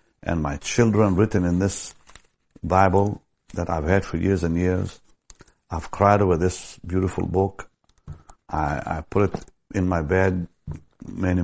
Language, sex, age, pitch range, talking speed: English, male, 60-79, 85-115 Hz, 145 wpm